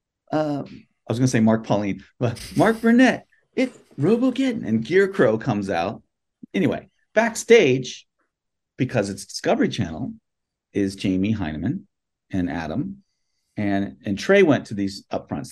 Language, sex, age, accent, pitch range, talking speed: English, male, 40-59, American, 100-125 Hz, 140 wpm